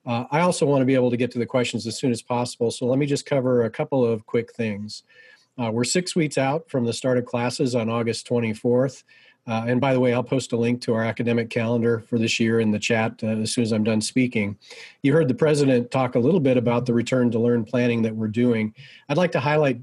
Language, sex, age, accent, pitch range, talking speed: English, male, 40-59, American, 115-135 Hz, 260 wpm